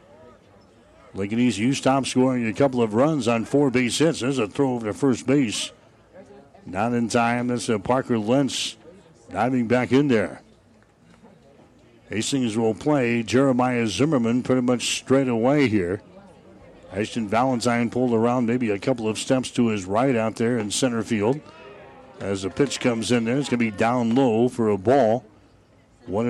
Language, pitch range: English, 115-135 Hz